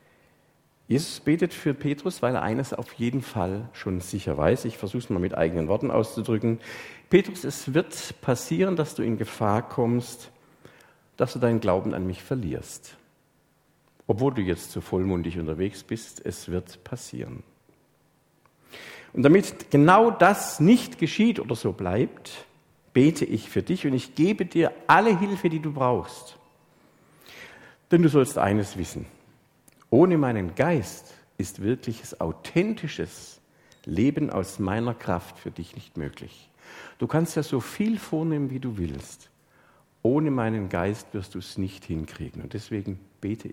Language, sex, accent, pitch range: German, male, German, 100-150 Hz